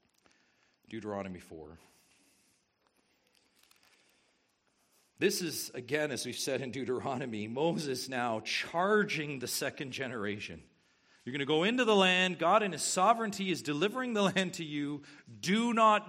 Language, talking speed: English, 130 wpm